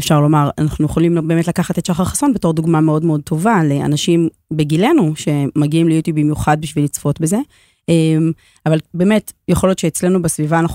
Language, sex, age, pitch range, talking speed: English, female, 30-49, 155-185 Hz, 160 wpm